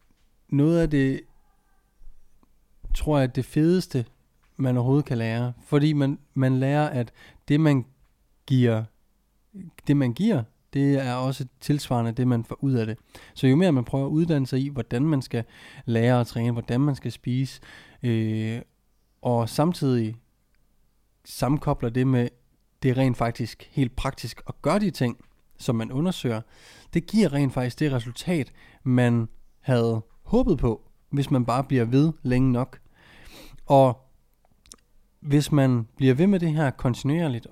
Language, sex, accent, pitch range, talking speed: Danish, male, native, 120-145 Hz, 155 wpm